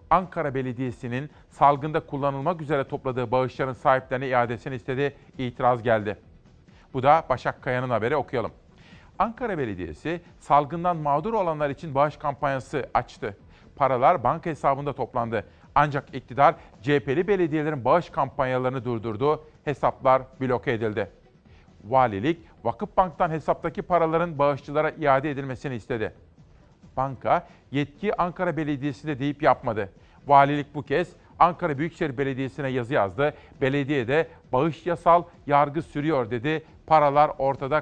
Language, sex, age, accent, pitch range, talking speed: Turkish, male, 40-59, native, 130-160 Hz, 115 wpm